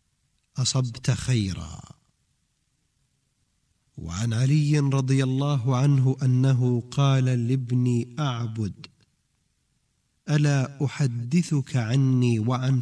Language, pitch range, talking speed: Arabic, 115-140 Hz, 70 wpm